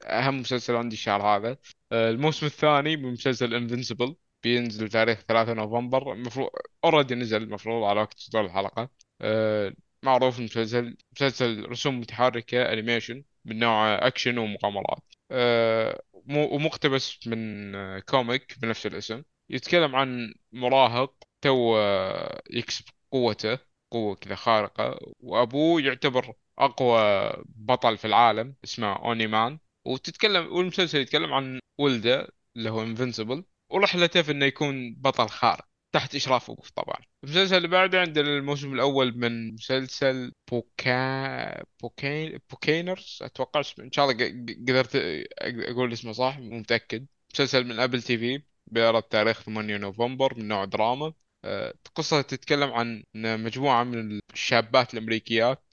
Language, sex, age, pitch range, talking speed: Arabic, male, 20-39, 115-135 Hz, 125 wpm